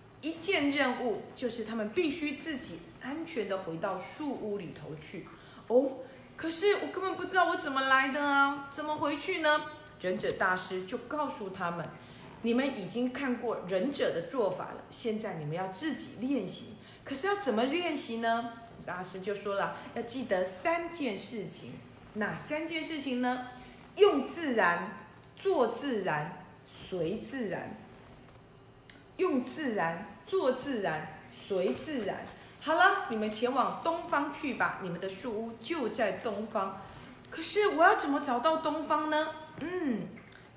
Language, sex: Chinese, female